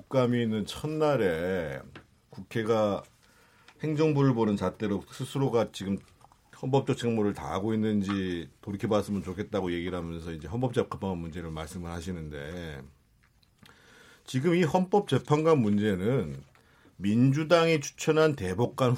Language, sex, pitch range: Korean, male, 105-145 Hz